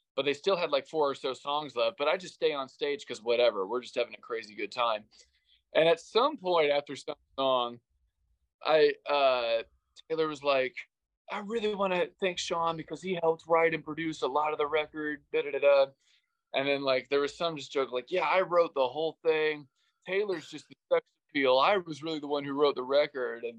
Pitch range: 135-190 Hz